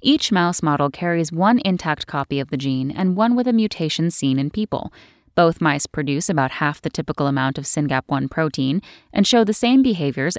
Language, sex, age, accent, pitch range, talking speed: English, female, 10-29, American, 150-210 Hz, 195 wpm